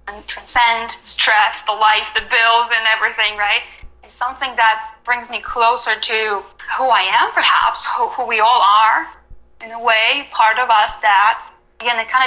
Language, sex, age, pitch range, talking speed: English, female, 10-29, 220-265 Hz, 175 wpm